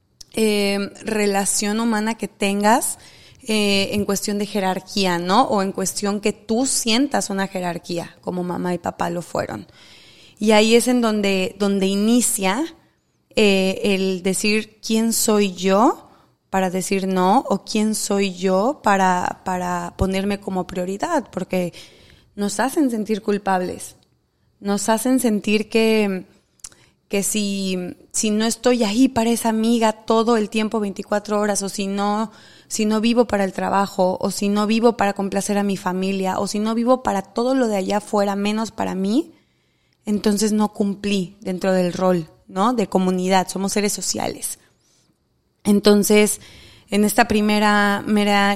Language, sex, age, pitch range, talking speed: Spanish, female, 20-39, 190-220 Hz, 150 wpm